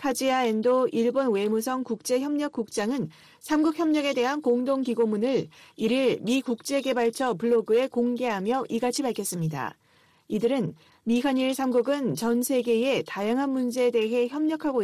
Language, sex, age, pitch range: Korean, female, 40-59, 225-265 Hz